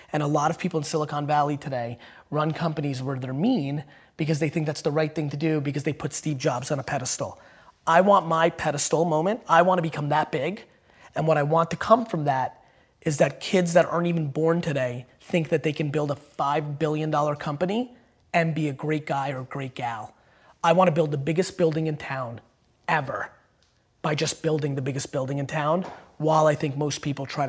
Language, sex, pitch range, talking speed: English, male, 145-165 Hz, 215 wpm